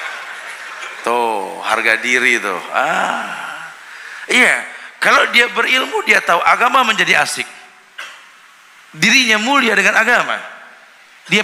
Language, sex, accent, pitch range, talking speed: Indonesian, male, native, 150-210 Hz, 100 wpm